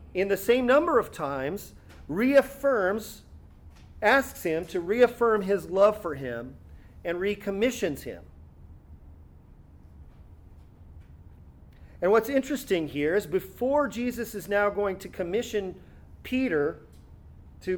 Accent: American